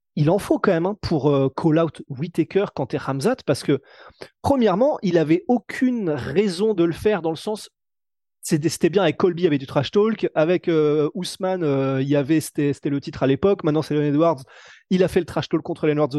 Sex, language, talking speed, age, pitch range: male, French, 235 wpm, 20-39, 150-210 Hz